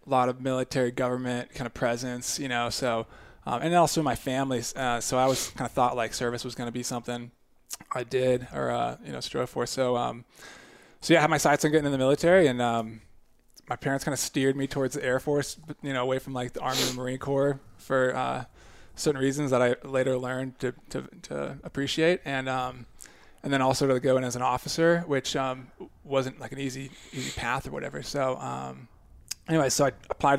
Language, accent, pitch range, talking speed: English, American, 125-145 Hz, 220 wpm